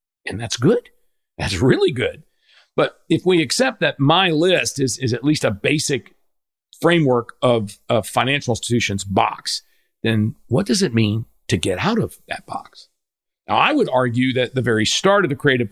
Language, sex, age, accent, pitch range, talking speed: English, male, 50-69, American, 120-160 Hz, 180 wpm